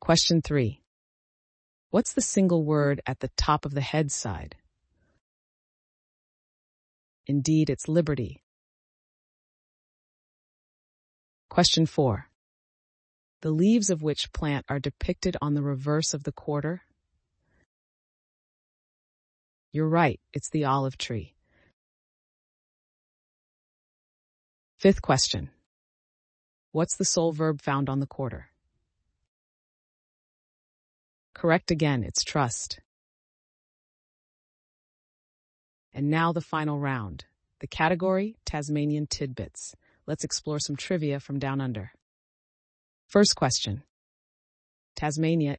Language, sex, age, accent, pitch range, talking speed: English, female, 30-49, American, 120-160 Hz, 90 wpm